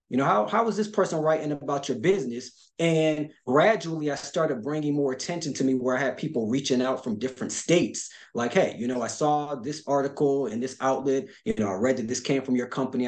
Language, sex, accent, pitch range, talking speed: English, male, American, 125-165 Hz, 225 wpm